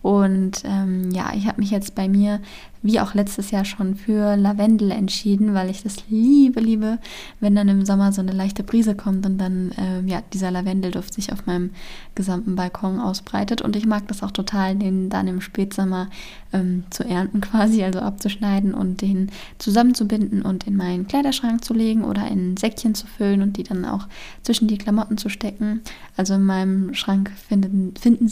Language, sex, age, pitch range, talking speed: German, female, 20-39, 190-215 Hz, 185 wpm